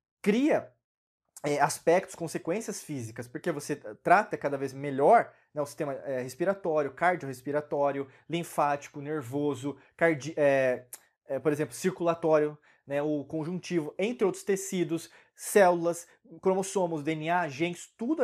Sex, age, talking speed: male, 20-39, 100 wpm